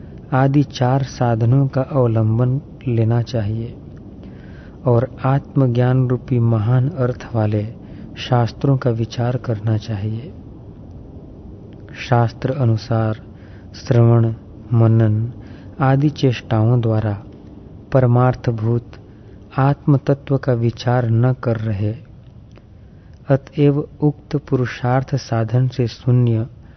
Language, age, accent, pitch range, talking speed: Hindi, 40-59, native, 105-130 Hz, 90 wpm